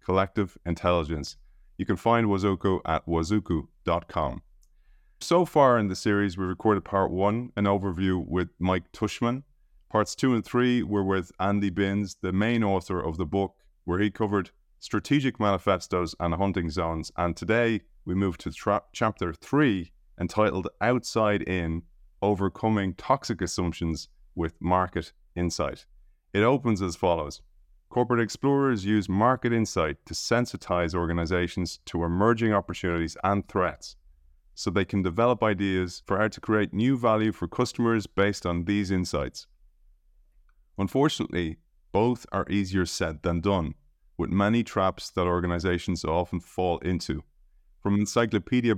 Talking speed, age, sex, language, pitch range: 140 wpm, 30-49, male, English, 85-105 Hz